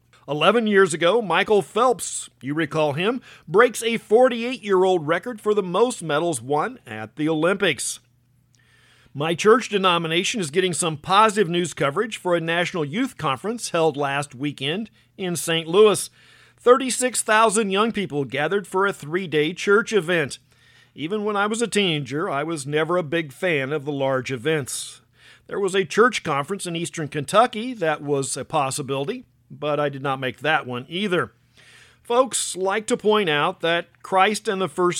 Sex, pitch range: male, 145-205 Hz